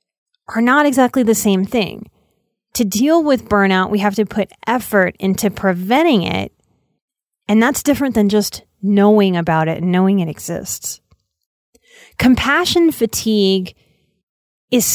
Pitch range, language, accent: 195-255 Hz, English, American